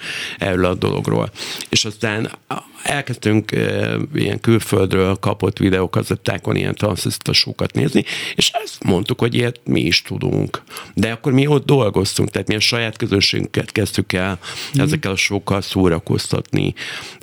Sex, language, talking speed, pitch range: male, Hungarian, 140 wpm, 95-115 Hz